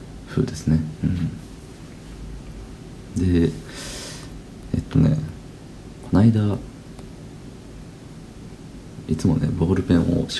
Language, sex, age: Japanese, male, 40-59